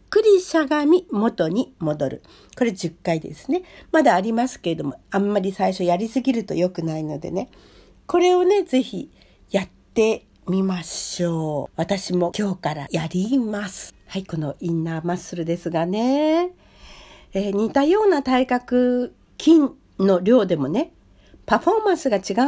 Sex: female